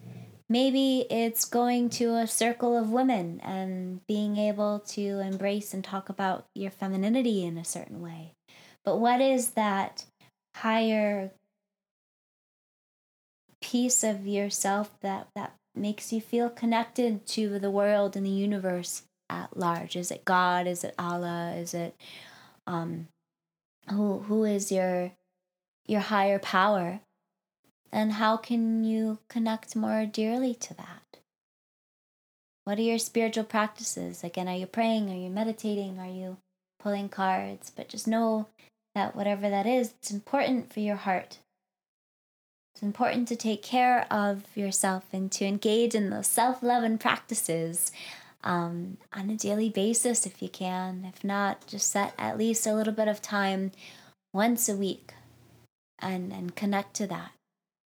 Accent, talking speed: American, 145 wpm